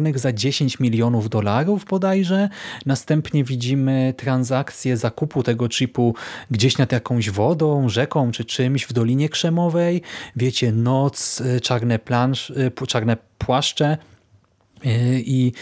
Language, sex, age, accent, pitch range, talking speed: Polish, male, 30-49, native, 120-150 Hz, 105 wpm